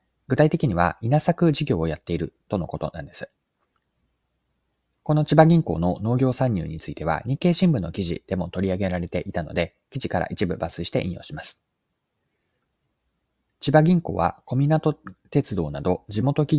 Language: Japanese